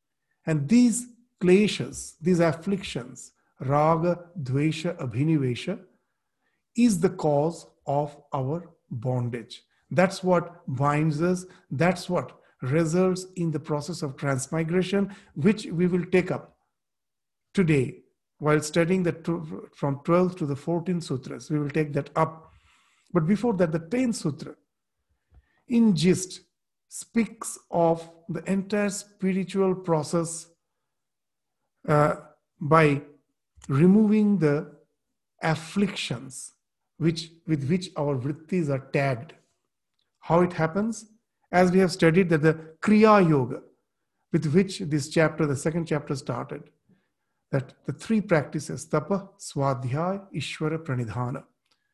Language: English